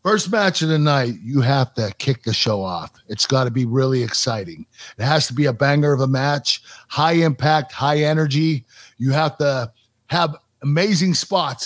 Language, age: English, 50-69